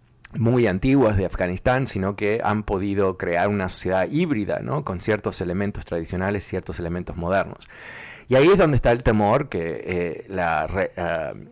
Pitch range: 85-110 Hz